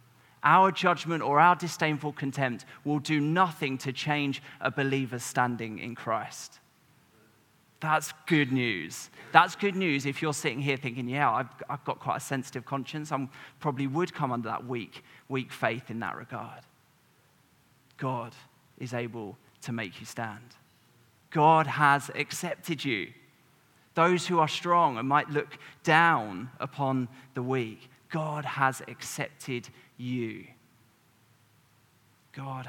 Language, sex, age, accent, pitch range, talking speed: English, male, 20-39, British, 125-150 Hz, 135 wpm